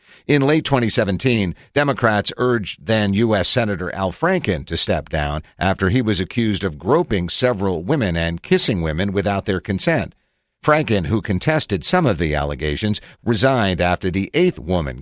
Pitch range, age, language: 95-130 Hz, 50-69, English